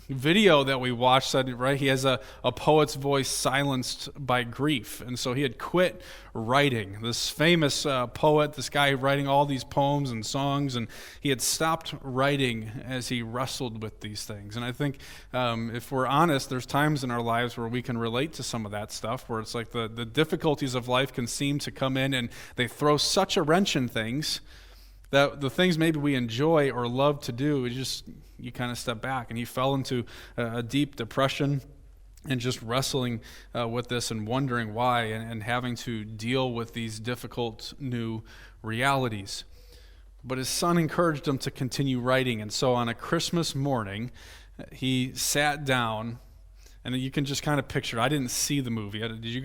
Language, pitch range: English, 115-140 Hz